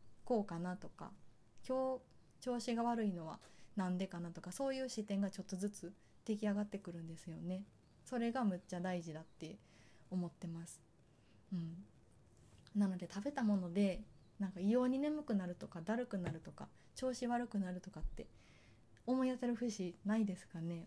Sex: female